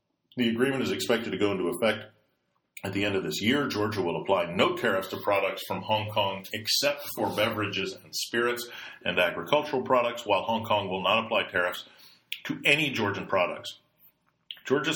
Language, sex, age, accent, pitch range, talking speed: English, male, 40-59, American, 95-120 Hz, 175 wpm